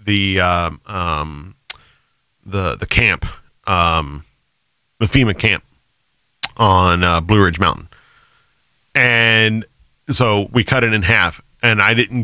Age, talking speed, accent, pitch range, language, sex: 40-59, 125 wpm, American, 95-130 Hz, English, male